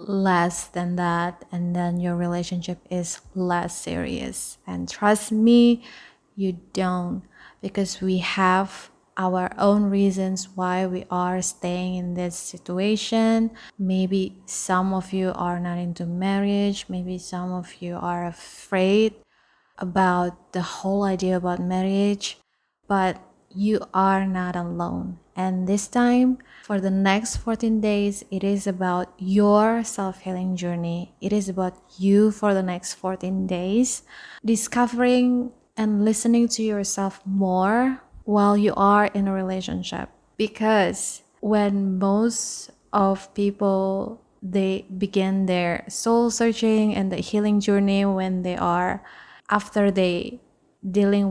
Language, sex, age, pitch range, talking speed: English, female, 20-39, 180-210 Hz, 125 wpm